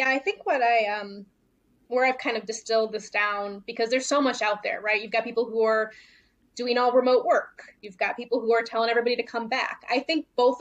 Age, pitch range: 20-39, 220-260 Hz